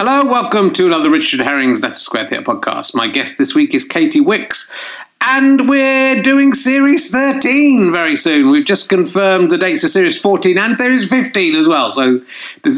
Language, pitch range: English, 185-295 Hz